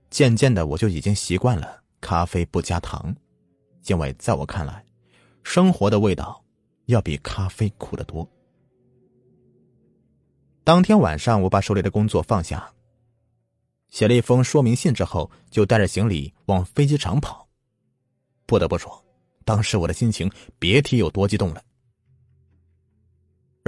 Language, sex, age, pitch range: Chinese, male, 30-49, 95-130 Hz